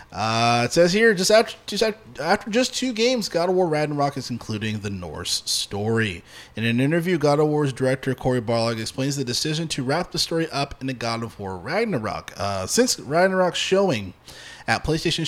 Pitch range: 115-160 Hz